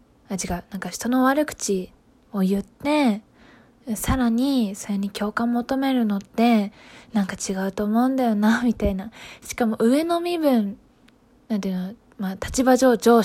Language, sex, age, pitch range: Japanese, female, 20-39, 200-255 Hz